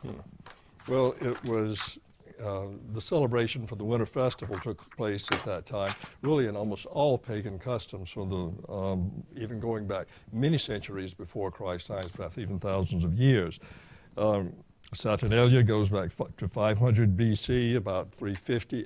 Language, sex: English, male